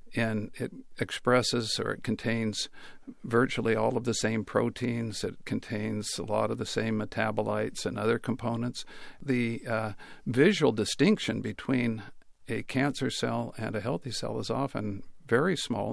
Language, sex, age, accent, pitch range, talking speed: English, male, 50-69, American, 110-120 Hz, 145 wpm